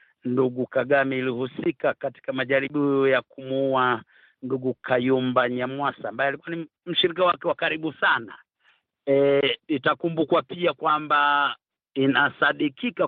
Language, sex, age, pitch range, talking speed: Swahili, male, 50-69, 135-180 Hz, 105 wpm